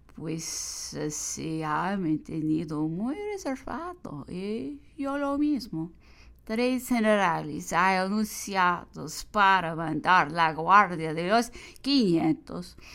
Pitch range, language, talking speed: 165-240 Hz, English, 110 wpm